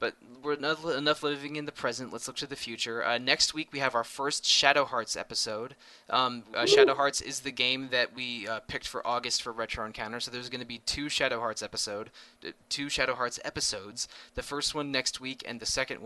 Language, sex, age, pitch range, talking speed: English, male, 20-39, 115-135 Hz, 225 wpm